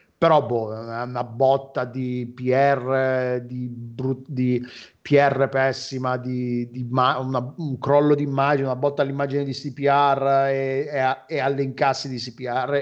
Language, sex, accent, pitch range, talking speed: Italian, male, native, 130-165 Hz, 145 wpm